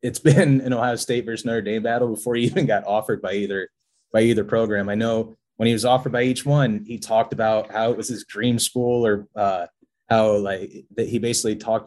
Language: English